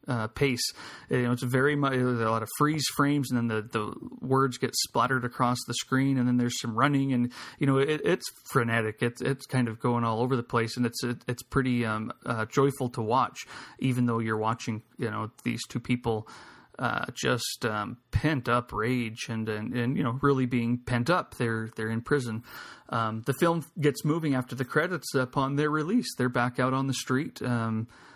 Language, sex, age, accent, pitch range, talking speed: English, male, 30-49, American, 115-130 Hz, 205 wpm